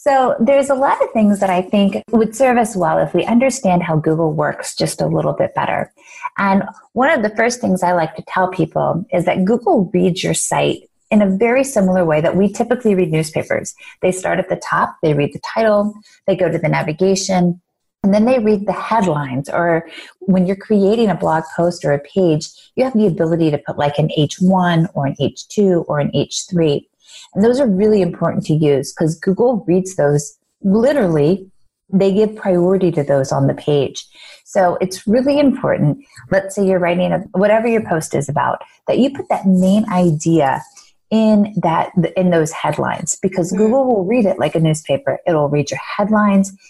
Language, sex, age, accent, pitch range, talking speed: English, female, 30-49, American, 160-215 Hz, 195 wpm